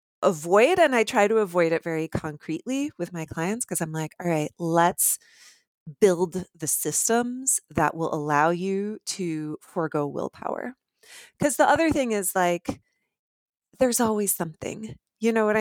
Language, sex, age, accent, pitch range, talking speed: English, female, 30-49, American, 170-215 Hz, 155 wpm